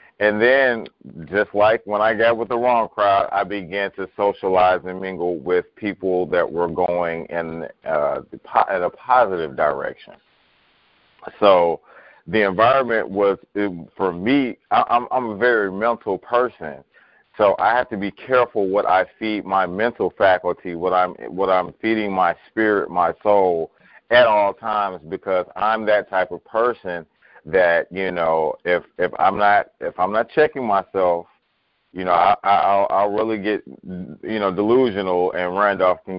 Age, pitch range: 40-59, 90-110 Hz